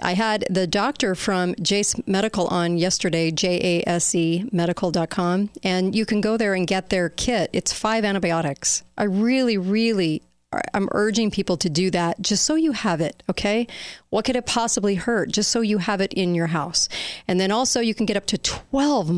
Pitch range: 180-220 Hz